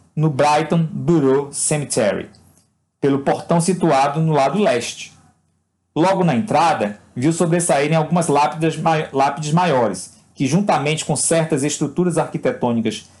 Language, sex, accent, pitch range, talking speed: Portuguese, male, Brazilian, 130-175 Hz, 115 wpm